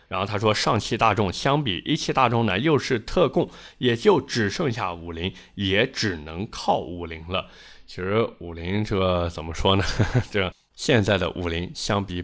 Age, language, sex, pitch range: 20-39, Chinese, male, 90-110 Hz